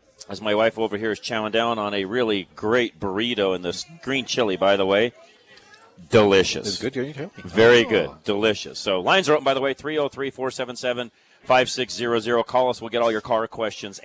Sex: male